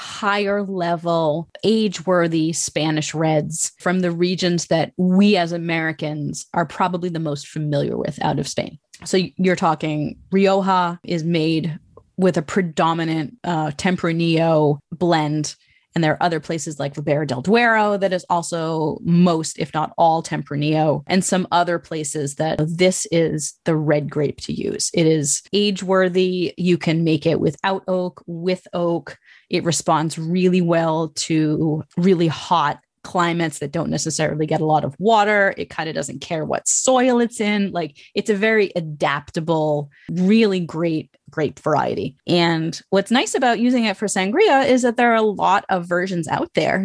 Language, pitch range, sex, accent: English, 160-205 Hz, female, American